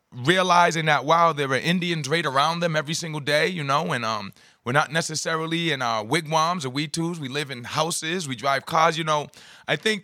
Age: 30-49